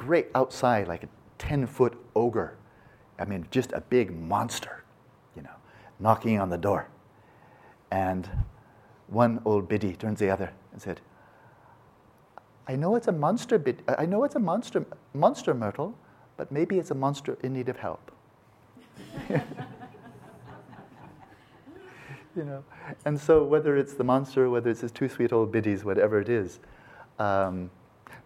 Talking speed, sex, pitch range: 145 wpm, male, 105-130 Hz